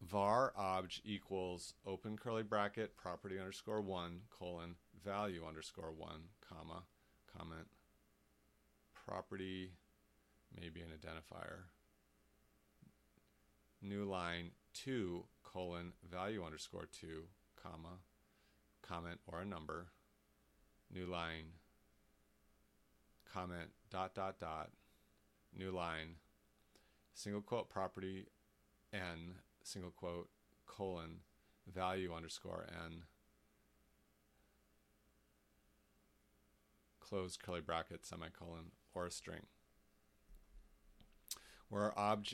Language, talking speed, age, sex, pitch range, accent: English, 85 wpm, 40-59, male, 85-100 Hz, American